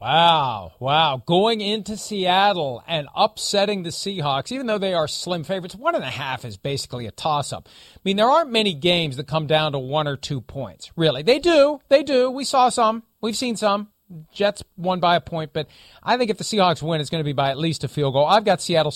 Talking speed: 235 wpm